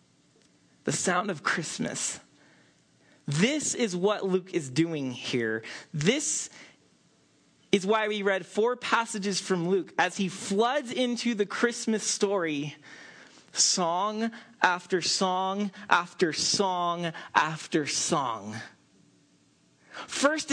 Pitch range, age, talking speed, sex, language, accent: 180-245 Hz, 30-49, 100 wpm, male, English, American